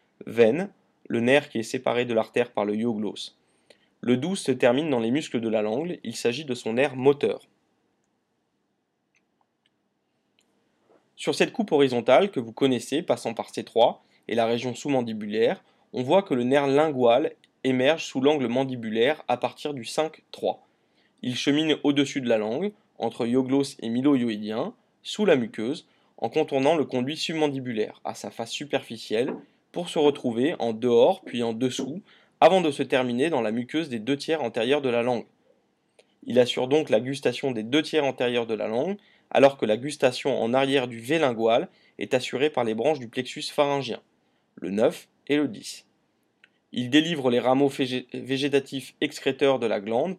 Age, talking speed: 20-39, 170 wpm